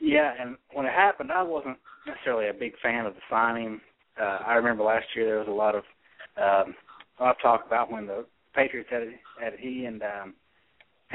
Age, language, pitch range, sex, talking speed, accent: 30-49, English, 115-135 Hz, male, 205 wpm, American